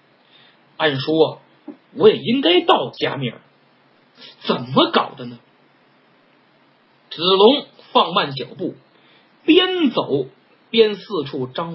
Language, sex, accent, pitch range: Chinese, male, native, 175-295 Hz